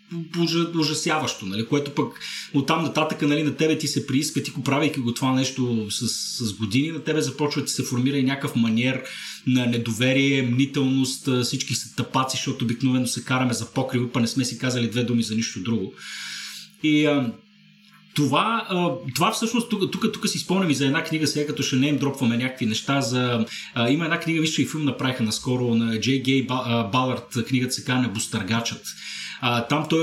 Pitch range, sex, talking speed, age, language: 120-145 Hz, male, 195 wpm, 30-49, Bulgarian